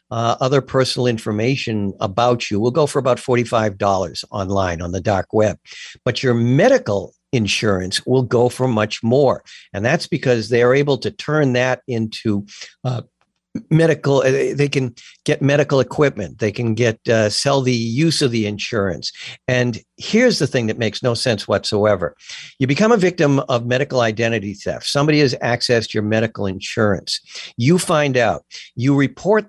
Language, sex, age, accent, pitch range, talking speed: English, male, 60-79, American, 110-140 Hz, 165 wpm